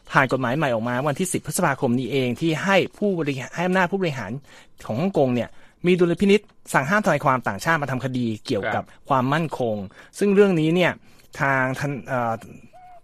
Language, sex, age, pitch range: Thai, male, 30-49, 125-180 Hz